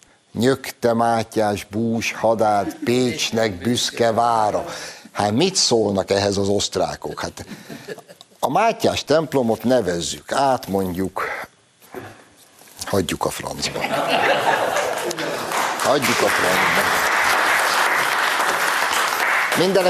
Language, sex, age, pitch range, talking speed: Hungarian, male, 60-79, 95-120 Hz, 80 wpm